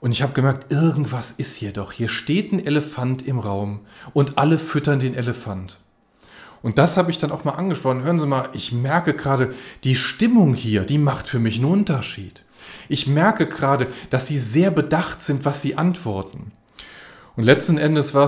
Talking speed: 185 wpm